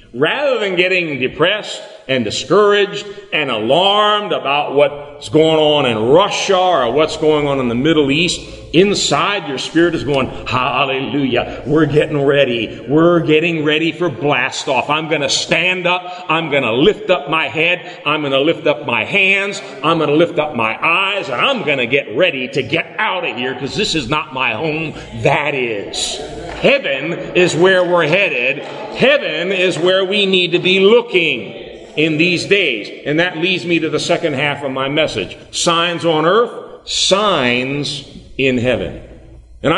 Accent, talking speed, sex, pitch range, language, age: American, 165 wpm, male, 135-175 Hz, English, 50-69